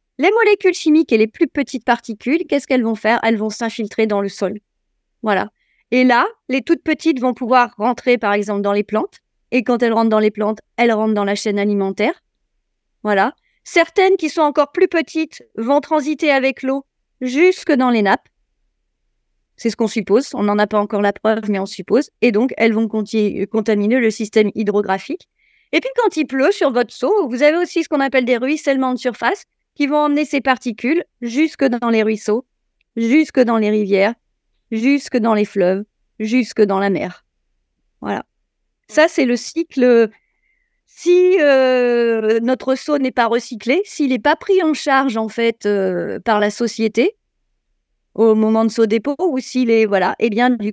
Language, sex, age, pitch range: French, female, 30-49, 220-295 Hz